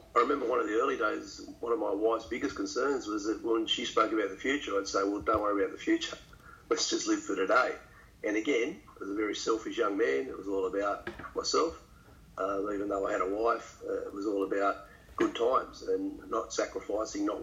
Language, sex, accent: English, male, Australian